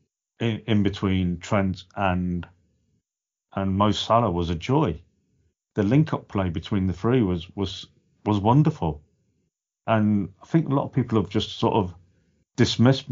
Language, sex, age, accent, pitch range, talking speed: English, male, 40-59, British, 90-115 Hz, 145 wpm